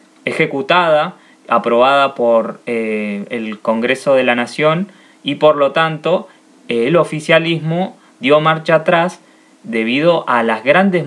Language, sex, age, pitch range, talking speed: Spanish, male, 20-39, 120-155 Hz, 125 wpm